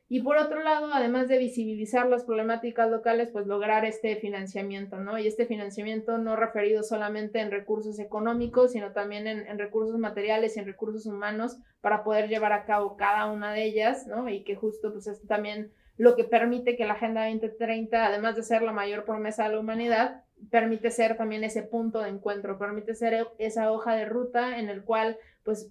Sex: female